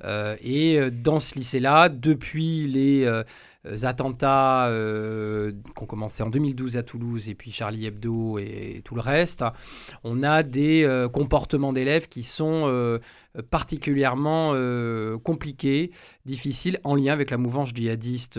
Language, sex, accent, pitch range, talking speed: French, male, French, 110-140 Hz, 145 wpm